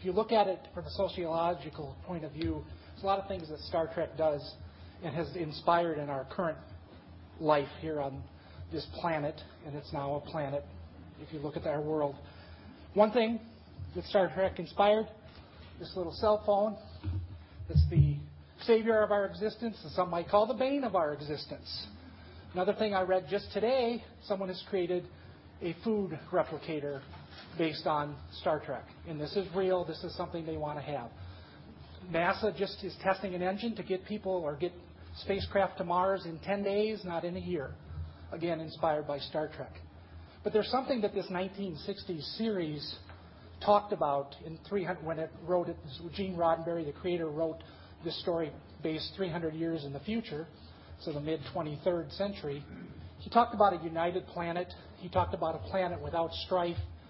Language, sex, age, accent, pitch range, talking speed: English, male, 40-59, American, 130-190 Hz, 175 wpm